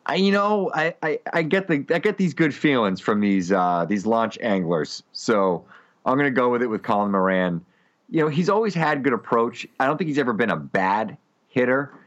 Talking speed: 225 wpm